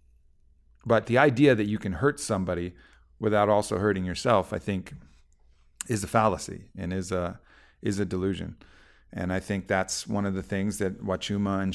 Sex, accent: male, American